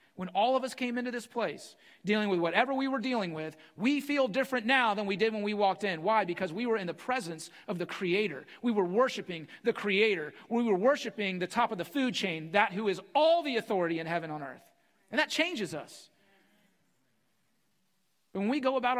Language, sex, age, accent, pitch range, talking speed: English, male, 40-59, American, 170-235 Hz, 215 wpm